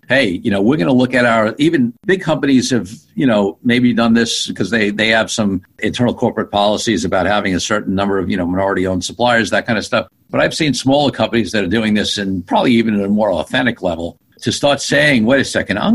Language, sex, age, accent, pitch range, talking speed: English, male, 50-69, American, 105-125 Hz, 245 wpm